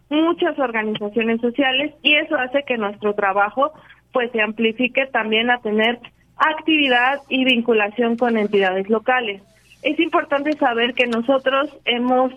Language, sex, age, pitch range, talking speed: Spanish, female, 30-49, 220-265 Hz, 130 wpm